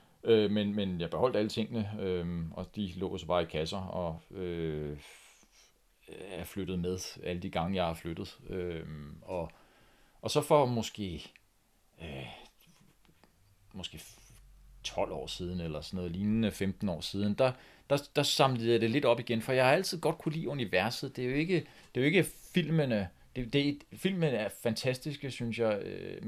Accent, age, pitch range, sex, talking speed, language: native, 40-59, 85-115 Hz, male, 180 wpm, Danish